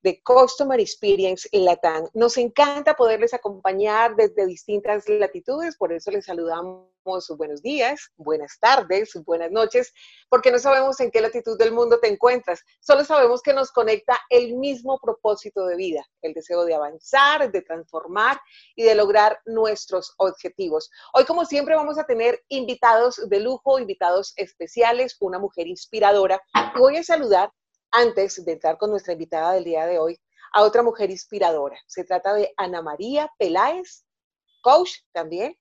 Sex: female